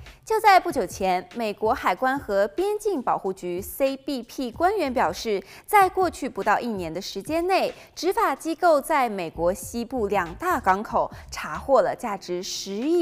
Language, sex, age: Chinese, female, 20-39